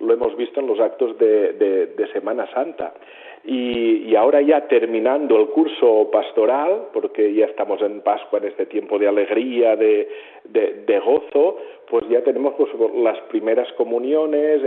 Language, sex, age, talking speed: Spanish, male, 40-59, 165 wpm